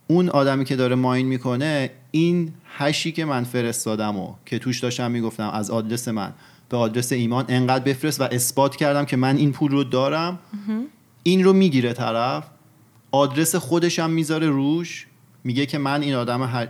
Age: 30-49